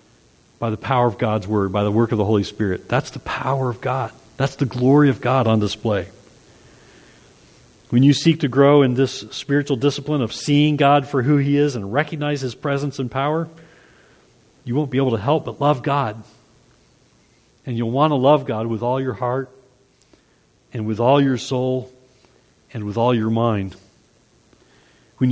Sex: male